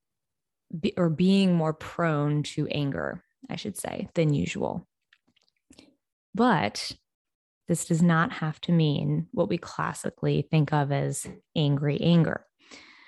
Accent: American